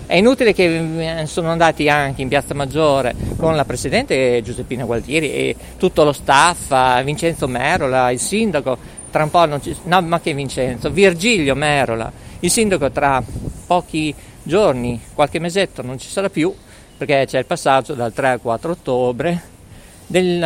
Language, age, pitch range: Italian, 50-69, 135-190 Hz